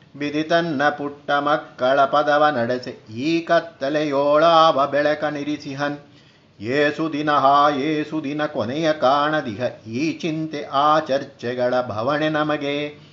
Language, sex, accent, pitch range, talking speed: Kannada, male, native, 140-155 Hz, 95 wpm